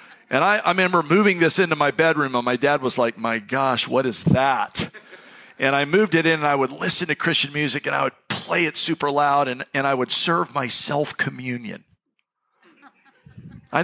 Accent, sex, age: American, male, 50-69